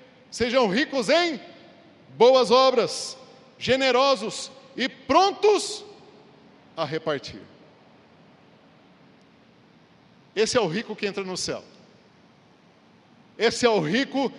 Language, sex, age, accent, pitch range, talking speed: Portuguese, male, 50-69, Brazilian, 210-255 Hz, 90 wpm